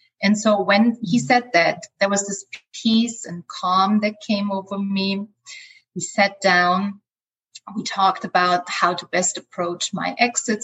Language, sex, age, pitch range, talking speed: English, female, 30-49, 180-215 Hz, 160 wpm